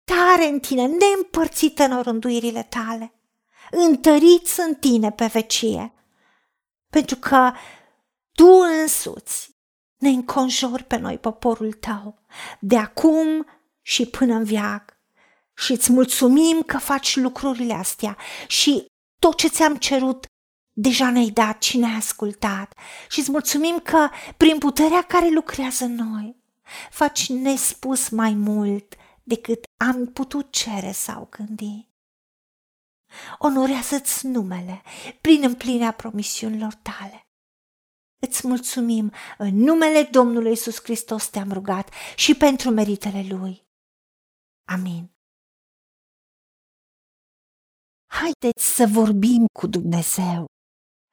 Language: Romanian